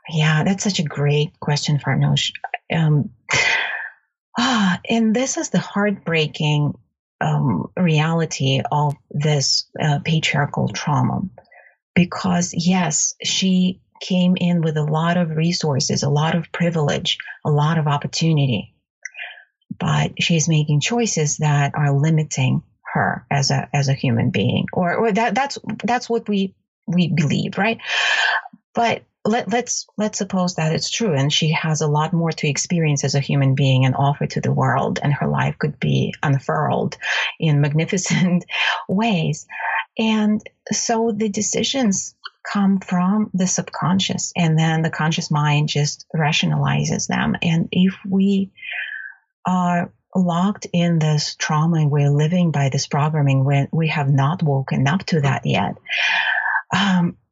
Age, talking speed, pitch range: 30-49, 145 wpm, 150-190 Hz